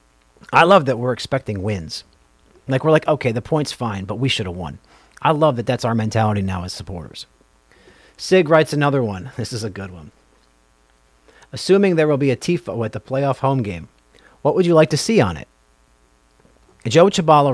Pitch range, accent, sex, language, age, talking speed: 85-140 Hz, American, male, English, 40-59, 195 wpm